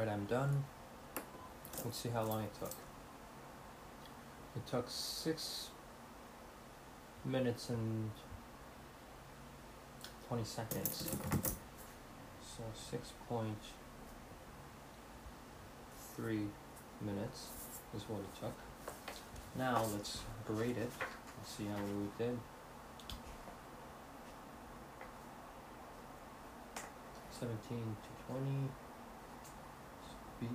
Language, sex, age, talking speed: English, male, 30-49, 70 wpm